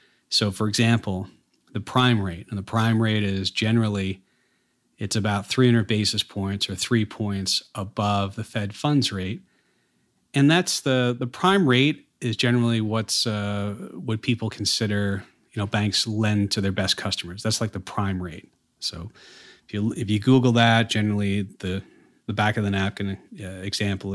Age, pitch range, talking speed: 40-59, 95-115 Hz, 165 wpm